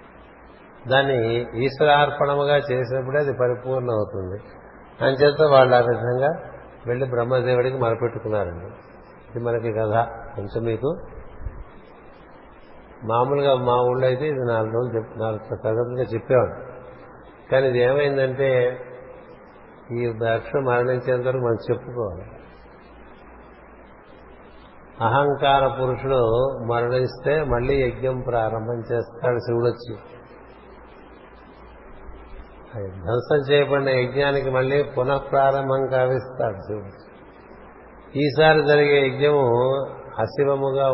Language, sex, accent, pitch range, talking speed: Telugu, male, native, 120-135 Hz, 85 wpm